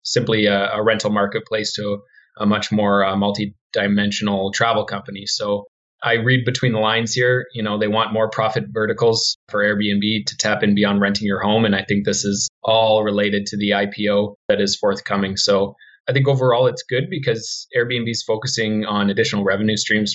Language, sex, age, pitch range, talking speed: English, male, 20-39, 100-110 Hz, 185 wpm